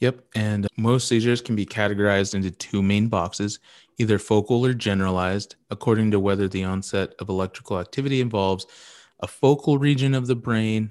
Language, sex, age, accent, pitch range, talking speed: English, male, 30-49, American, 95-110 Hz, 165 wpm